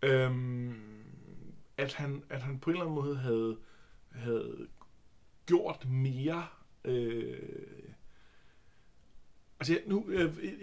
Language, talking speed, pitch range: Danish, 105 wpm, 120-150 Hz